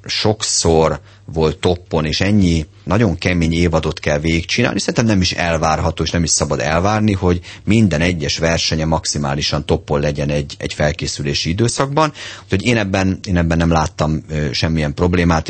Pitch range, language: 75-95 Hz, Hungarian